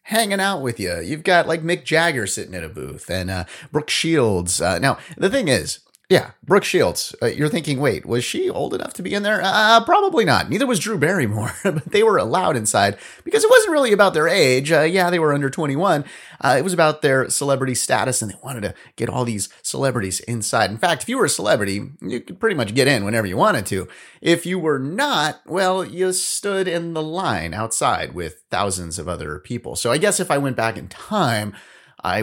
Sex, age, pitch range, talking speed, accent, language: male, 30-49, 105-170 Hz, 225 wpm, American, English